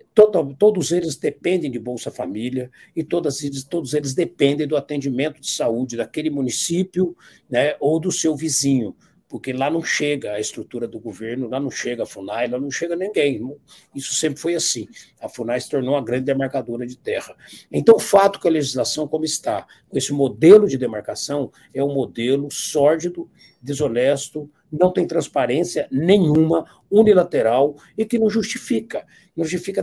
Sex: male